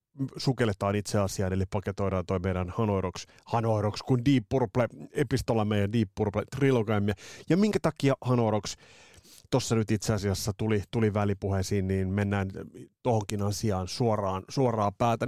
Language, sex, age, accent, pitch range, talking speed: Finnish, male, 30-49, native, 105-135 Hz, 140 wpm